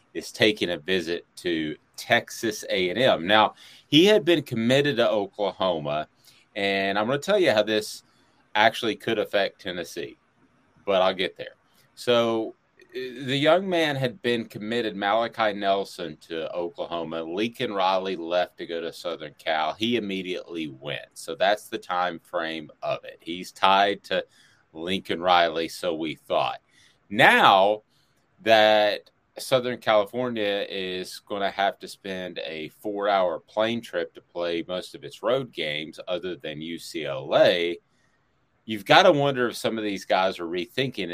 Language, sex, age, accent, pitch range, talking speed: English, male, 30-49, American, 95-130 Hz, 150 wpm